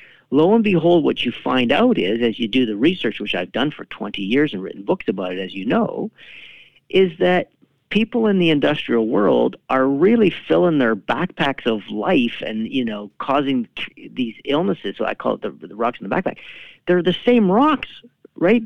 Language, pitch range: English, 130-205 Hz